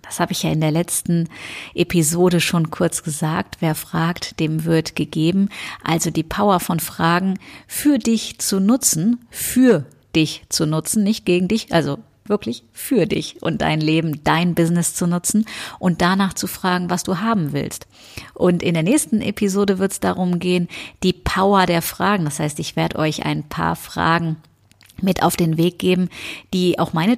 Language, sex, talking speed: German, female, 175 wpm